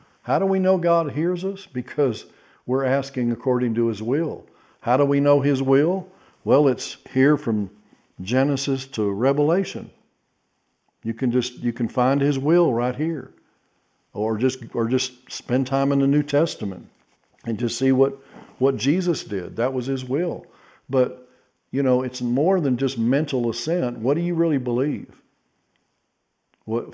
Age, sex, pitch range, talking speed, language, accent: 50-69, male, 120-145 Hz, 165 wpm, English, American